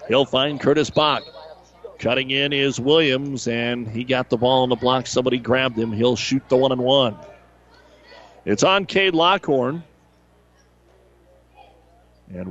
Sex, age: male, 40-59